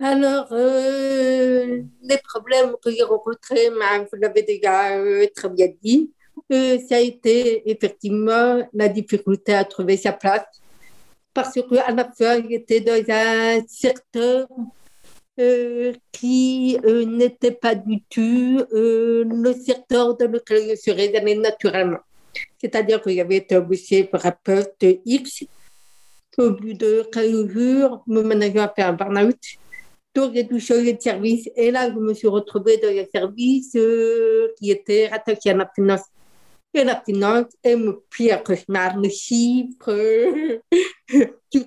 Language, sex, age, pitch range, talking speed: French, female, 60-79, 210-250 Hz, 150 wpm